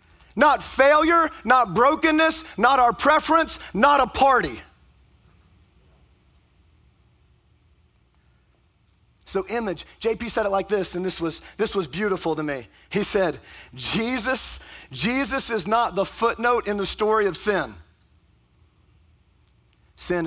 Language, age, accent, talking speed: English, 40-59, American, 115 wpm